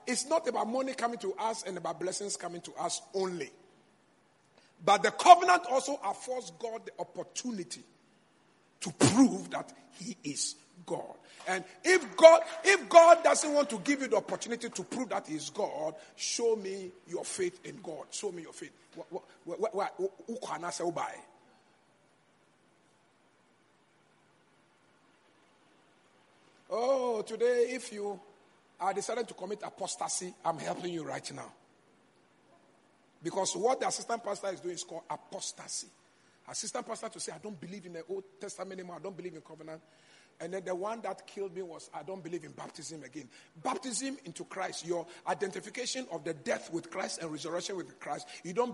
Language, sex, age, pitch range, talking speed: English, male, 50-69, 175-245 Hz, 160 wpm